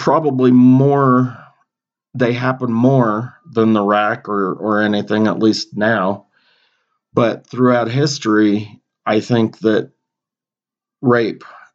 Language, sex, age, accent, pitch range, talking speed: English, male, 40-59, American, 100-120 Hz, 105 wpm